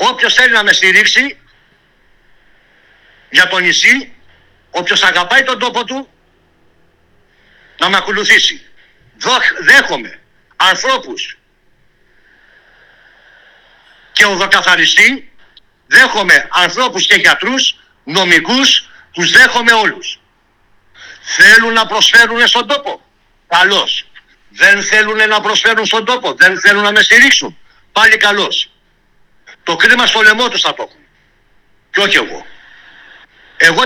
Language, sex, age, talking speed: Greek, male, 60-79, 105 wpm